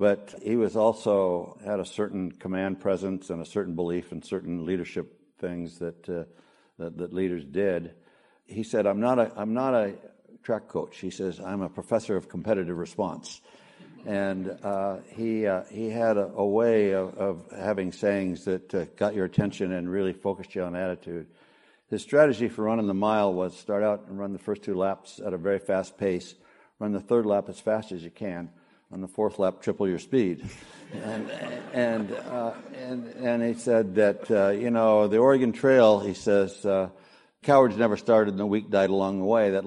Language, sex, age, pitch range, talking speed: Persian, male, 60-79, 95-110 Hz, 195 wpm